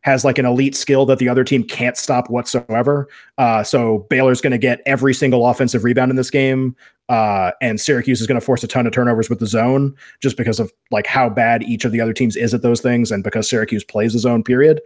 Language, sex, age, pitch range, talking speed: English, male, 20-39, 120-135 Hz, 245 wpm